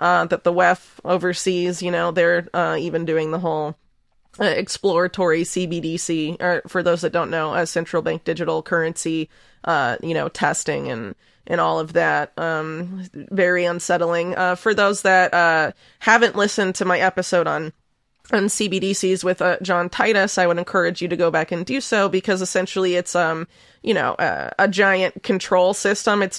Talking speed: 180 wpm